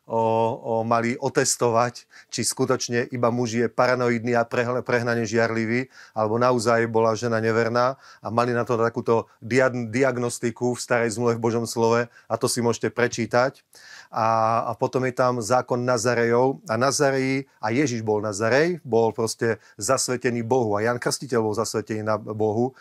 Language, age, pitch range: Slovak, 30-49, 115-125 Hz